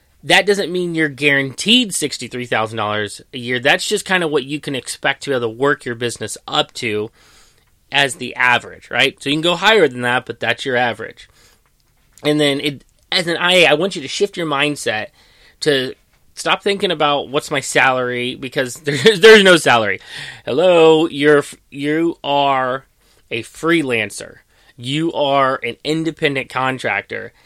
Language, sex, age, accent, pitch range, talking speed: English, male, 30-49, American, 125-165 Hz, 165 wpm